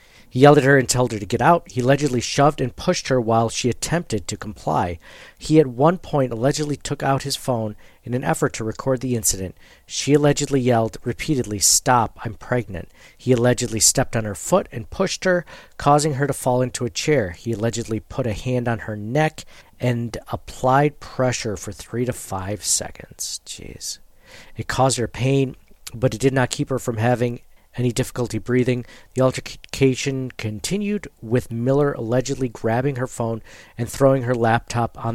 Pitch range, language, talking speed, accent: 110-135 Hz, English, 180 wpm, American